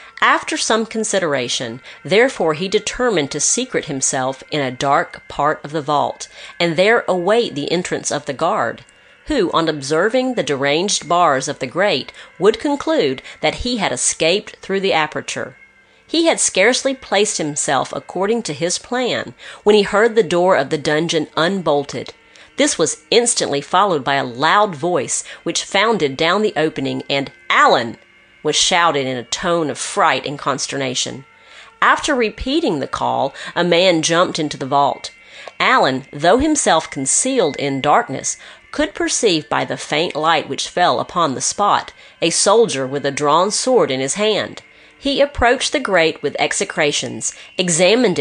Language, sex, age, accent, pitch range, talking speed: English, female, 40-59, American, 150-230 Hz, 160 wpm